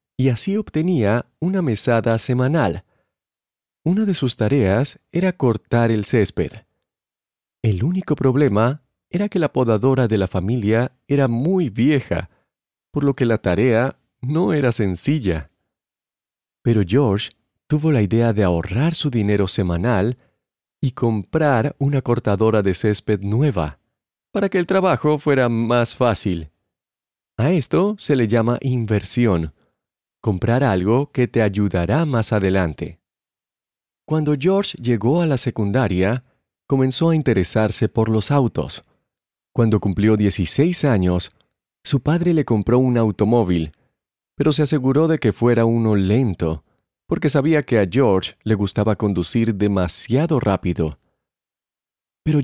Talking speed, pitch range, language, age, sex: 130 wpm, 105-145 Hz, Spanish, 40-59, male